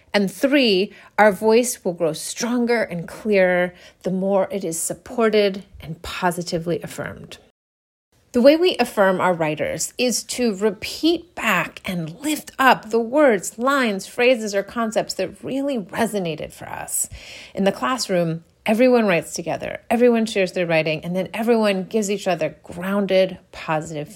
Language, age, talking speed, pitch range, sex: English, 30-49, 145 wpm, 175-230 Hz, female